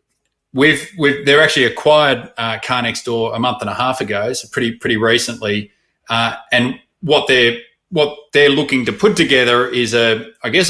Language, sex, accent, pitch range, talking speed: English, male, Australian, 115-135 Hz, 185 wpm